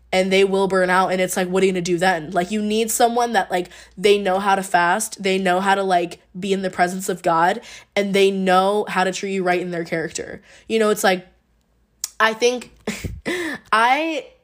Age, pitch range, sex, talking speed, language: 20-39, 180-200 Hz, female, 230 wpm, English